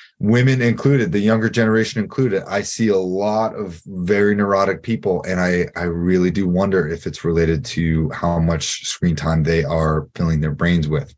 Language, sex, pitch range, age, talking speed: English, male, 85-115 Hz, 30-49, 180 wpm